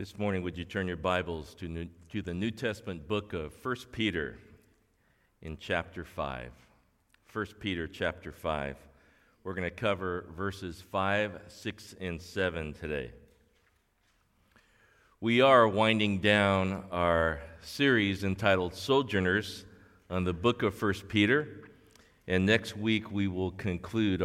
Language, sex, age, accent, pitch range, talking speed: English, male, 50-69, American, 85-110 Hz, 135 wpm